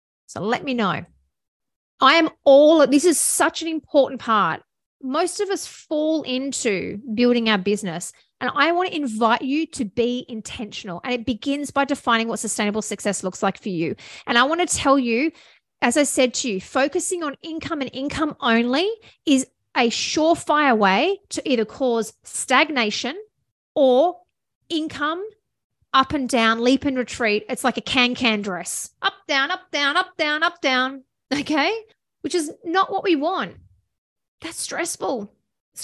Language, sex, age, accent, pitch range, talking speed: English, female, 30-49, Australian, 240-325 Hz, 165 wpm